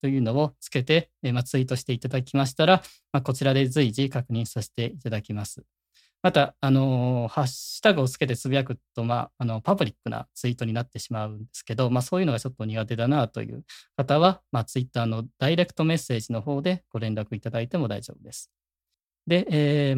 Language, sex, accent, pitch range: Japanese, male, native, 115-145 Hz